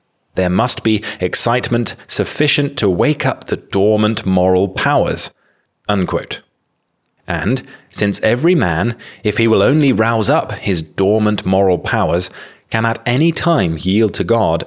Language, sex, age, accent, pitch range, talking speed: English, male, 30-49, British, 95-130 Hz, 140 wpm